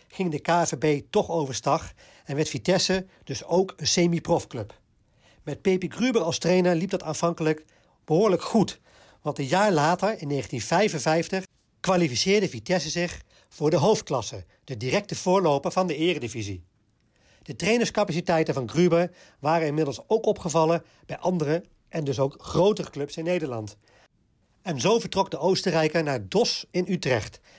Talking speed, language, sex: 145 wpm, Dutch, male